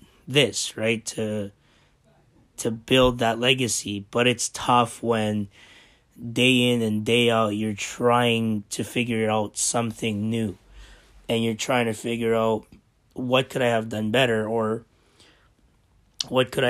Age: 20-39